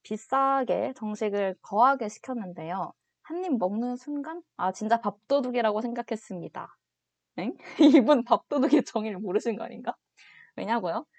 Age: 20-39